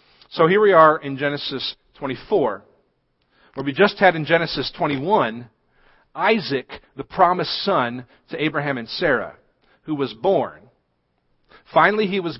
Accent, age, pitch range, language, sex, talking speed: American, 40-59, 125-165 Hz, English, male, 135 wpm